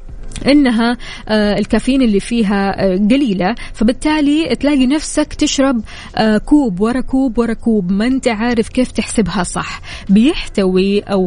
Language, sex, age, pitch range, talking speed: Arabic, female, 20-39, 195-245 Hz, 115 wpm